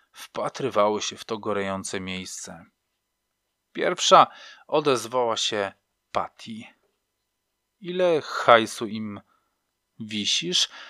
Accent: native